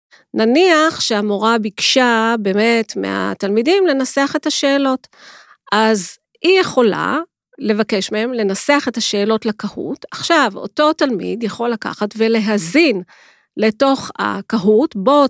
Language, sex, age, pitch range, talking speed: Hebrew, female, 40-59, 210-285 Hz, 100 wpm